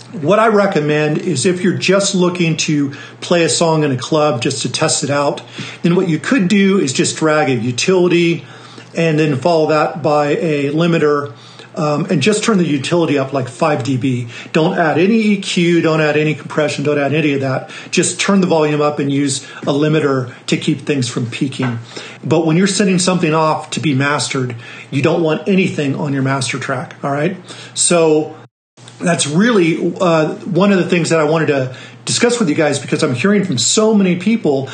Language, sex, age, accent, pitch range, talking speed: English, male, 40-59, American, 140-175 Hz, 200 wpm